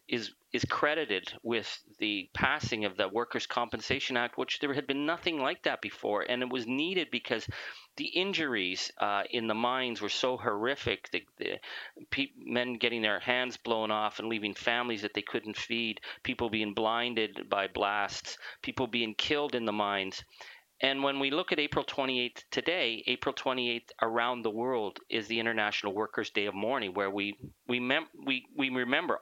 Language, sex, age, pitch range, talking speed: English, male, 40-59, 110-130 Hz, 175 wpm